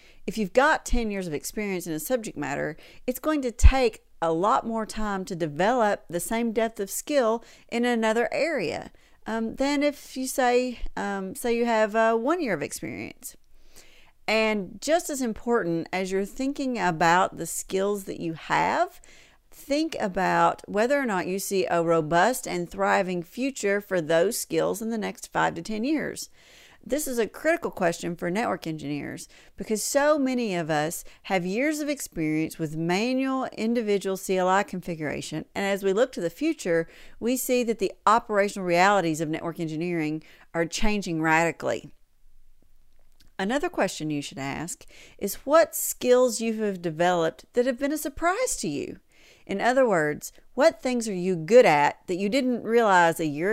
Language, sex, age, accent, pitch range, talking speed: English, female, 50-69, American, 175-245 Hz, 170 wpm